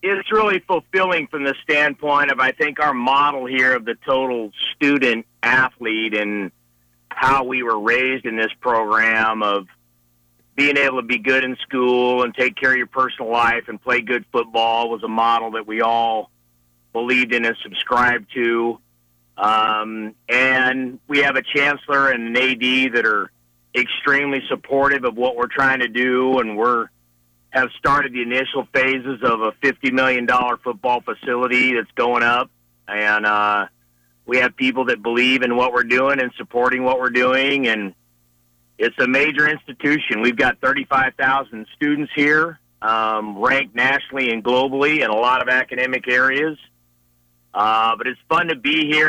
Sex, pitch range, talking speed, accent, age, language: male, 115-140 Hz, 165 wpm, American, 50-69, English